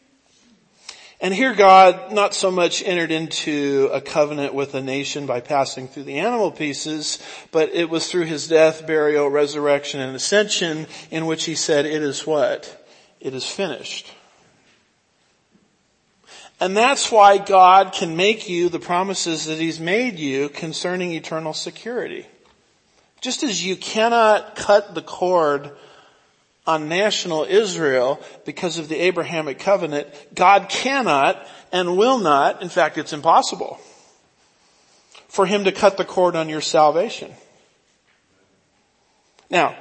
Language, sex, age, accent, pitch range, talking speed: English, male, 50-69, American, 145-190 Hz, 135 wpm